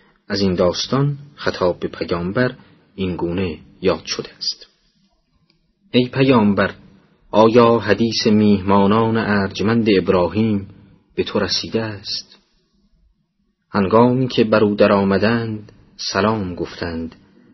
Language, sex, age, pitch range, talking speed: Persian, male, 30-49, 95-120 Hz, 90 wpm